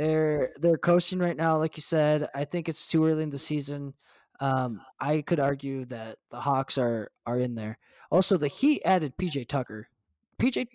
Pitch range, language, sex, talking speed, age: 115-160 Hz, English, male, 190 wpm, 20-39